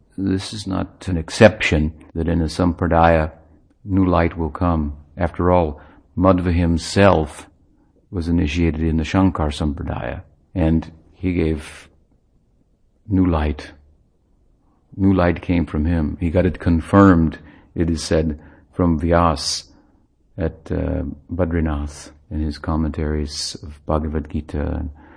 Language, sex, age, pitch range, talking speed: English, male, 50-69, 80-90 Hz, 125 wpm